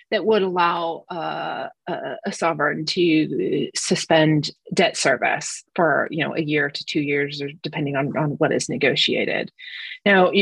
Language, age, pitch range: English, 30-49, 160-200 Hz